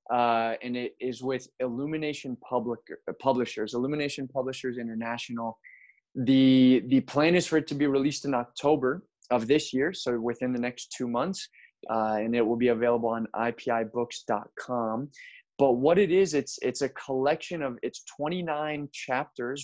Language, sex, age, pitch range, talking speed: English, male, 20-39, 120-145 Hz, 160 wpm